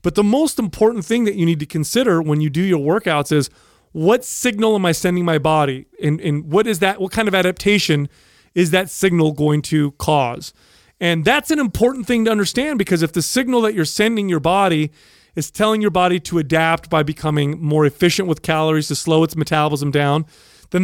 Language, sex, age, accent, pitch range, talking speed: English, male, 30-49, American, 150-195 Hz, 200 wpm